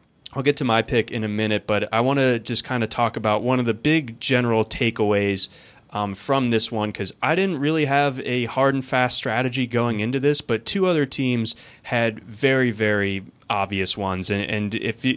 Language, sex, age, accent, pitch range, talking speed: English, male, 20-39, American, 105-125 Hz, 205 wpm